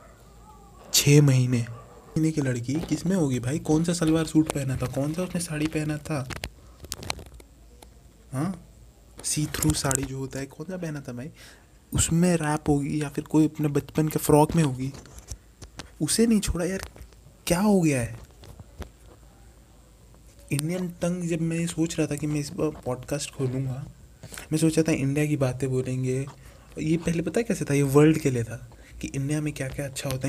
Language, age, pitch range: Hindi, 20-39, 130-160 Hz